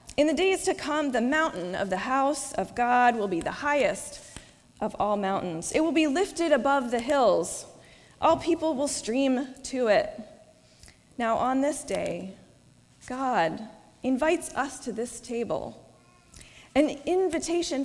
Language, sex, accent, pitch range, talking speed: English, female, American, 210-290 Hz, 150 wpm